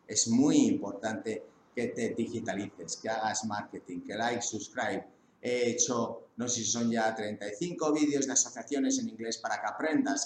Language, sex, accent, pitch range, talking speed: English, male, Spanish, 115-150 Hz, 165 wpm